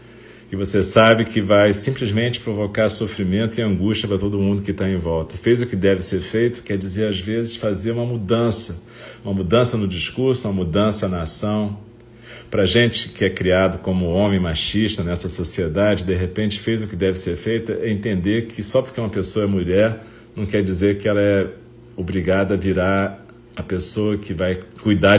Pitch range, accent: 95-115 Hz, Brazilian